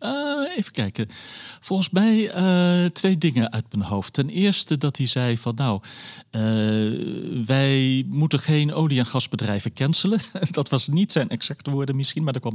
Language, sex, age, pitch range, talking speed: Dutch, male, 40-59, 105-140 Hz, 170 wpm